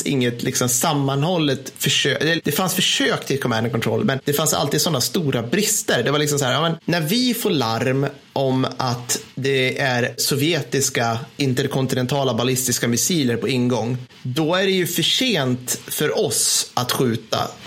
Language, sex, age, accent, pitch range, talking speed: Swedish, male, 30-49, native, 130-175 Hz, 160 wpm